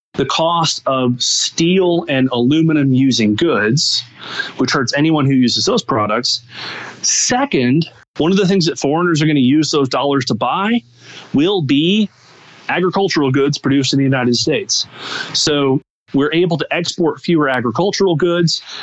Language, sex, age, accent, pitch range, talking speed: English, male, 30-49, American, 130-170 Hz, 150 wpm